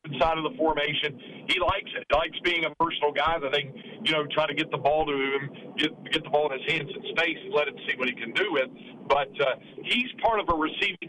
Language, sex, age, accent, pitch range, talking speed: English, male, 50-69, American, 140-160 Hz, 270 wpm